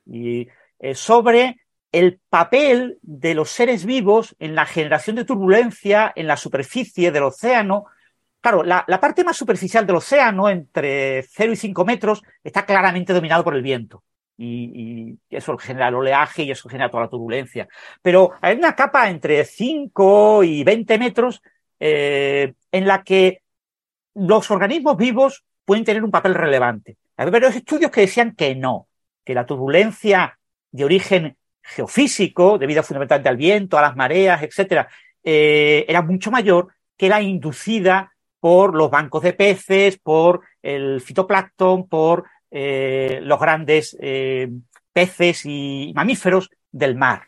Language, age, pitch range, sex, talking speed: Spanish, 50-69, 145-210 Hz, male, 145 wpm